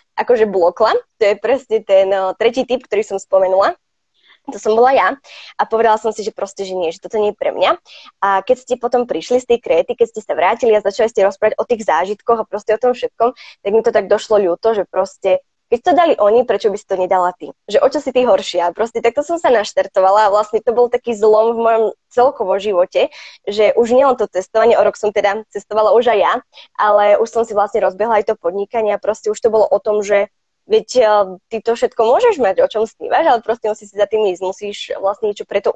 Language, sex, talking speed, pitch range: Slovak, female, 240 wpm, 195-235 Hz